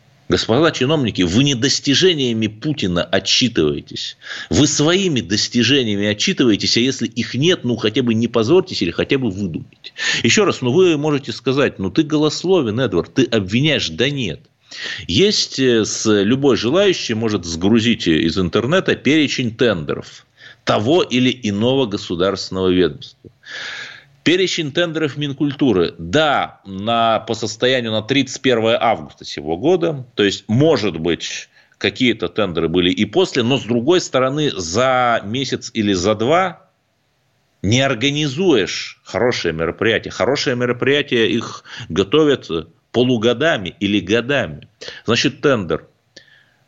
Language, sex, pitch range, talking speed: Russian, male, 105-140 Hz, 125 wpm